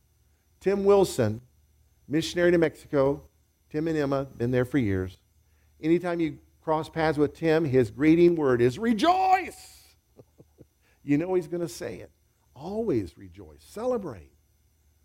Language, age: English, 50-69